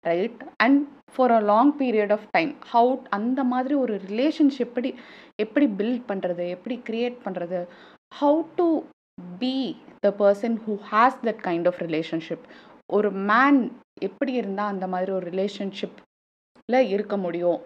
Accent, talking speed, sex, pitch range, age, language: native, 140 wpm, female, 190-255 Hz, 20-39, Tamil